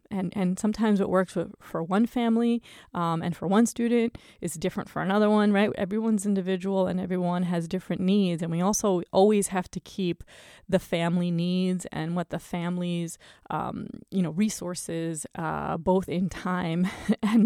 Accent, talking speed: American, 170 wpm